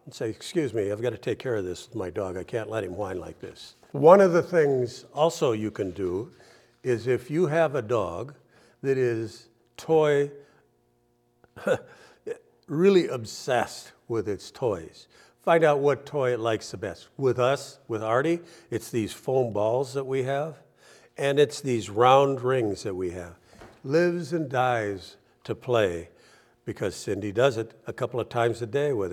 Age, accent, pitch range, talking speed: 60-79, American, 110-145 Hz, 175 wpm